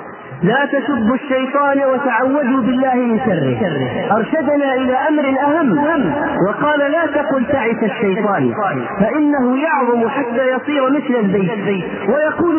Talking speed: 110 wpm